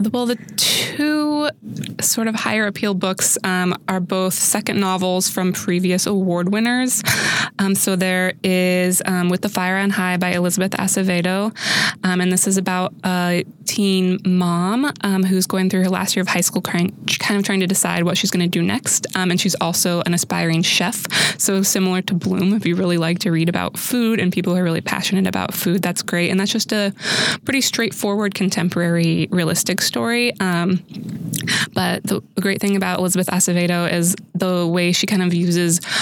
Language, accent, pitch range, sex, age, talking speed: English, American, 175-200 Hz, female, 20-39, 190 wpm